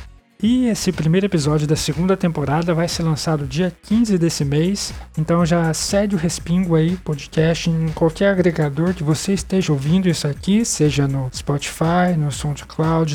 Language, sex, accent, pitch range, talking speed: Portuguese, male, Brazilian, 150-190 Hz, 160 wpm